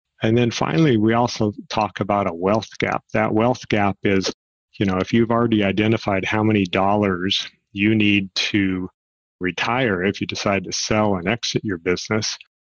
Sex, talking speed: male, 170 wpm